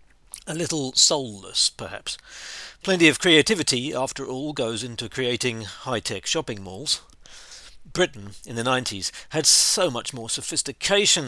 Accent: British